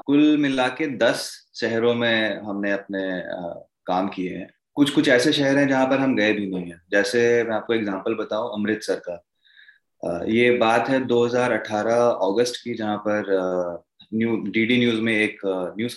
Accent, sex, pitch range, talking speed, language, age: native, male, 100-120 Hz, 175 wpm, Hindi, 20-39